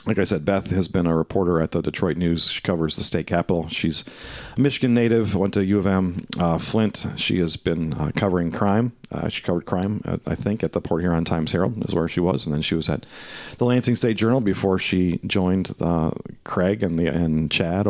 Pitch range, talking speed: 85-110 Hz, 230 wpm